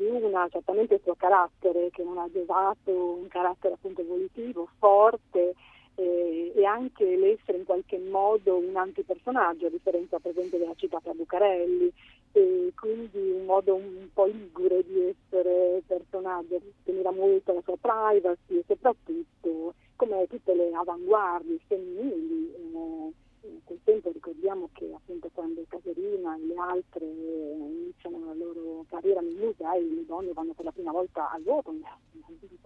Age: 40-59